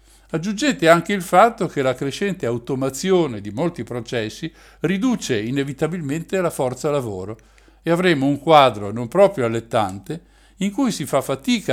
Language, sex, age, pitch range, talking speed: Italian, male, 60-79, 120-170 Hz, 145 wpm